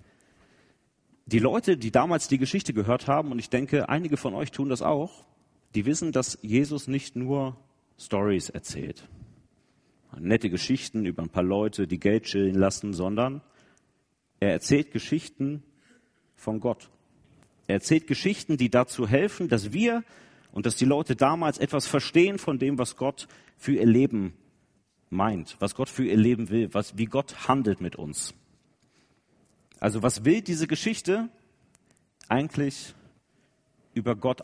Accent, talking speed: German, 145 wpm